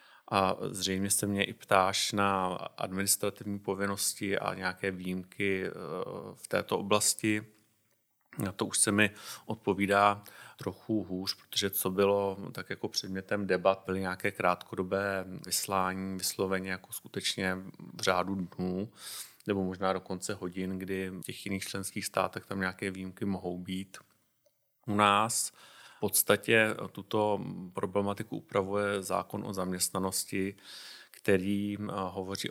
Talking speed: 125 wpm